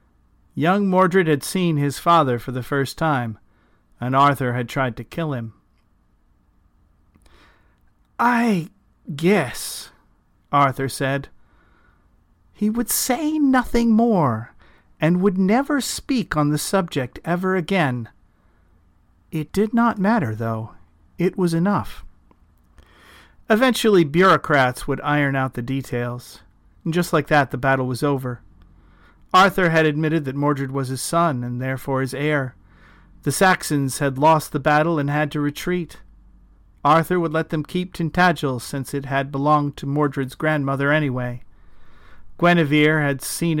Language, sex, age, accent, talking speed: English, male, 40-59, American, 135 wpm